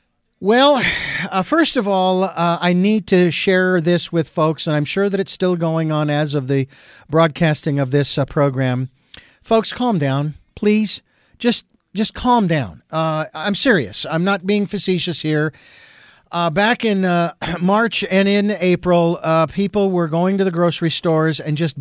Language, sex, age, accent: English, male, 50-69, American